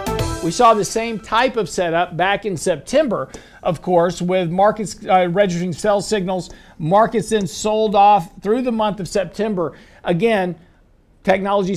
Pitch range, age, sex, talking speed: 170-215 Hz, 50-69, male, 150 wpm